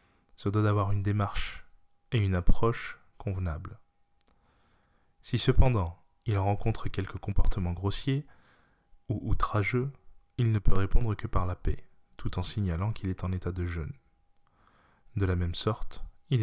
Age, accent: 20-39, French